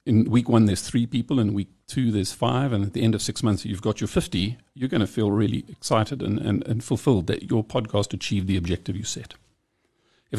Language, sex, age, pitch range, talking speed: English, male, 50-69, 100-125 Hz, 230 wpm